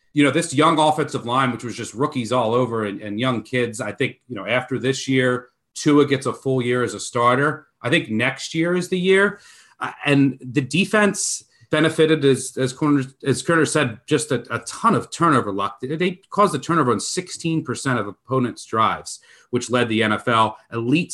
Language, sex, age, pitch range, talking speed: English, male, 30-49, 120-150 Hz, 200 wpm